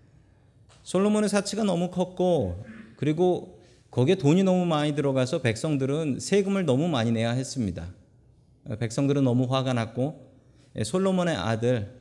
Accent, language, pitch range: native, Korean, 115-165 Hz